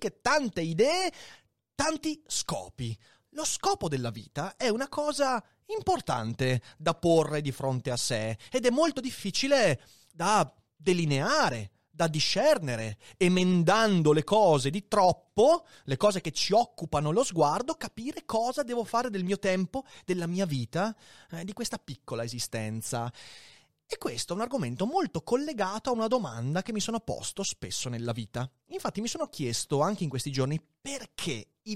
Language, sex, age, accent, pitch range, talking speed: Italian, male, 30-49, native, 135-230 Hz, 150 wpm